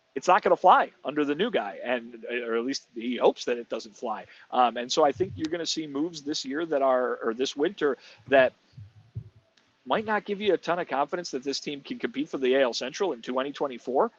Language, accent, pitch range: English, American, 125-155 Hz